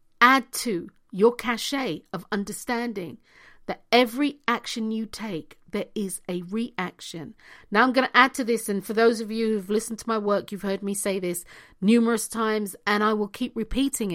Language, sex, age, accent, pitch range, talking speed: English, female, 50-69, British, 200-255 Hz, 185 wpm